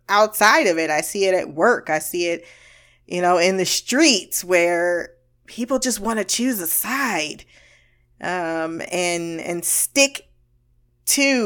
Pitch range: 165-240 Hz